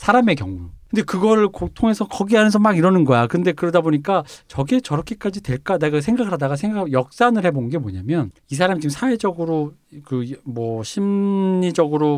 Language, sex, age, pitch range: Korean, male, 40-59, 125-180 Hz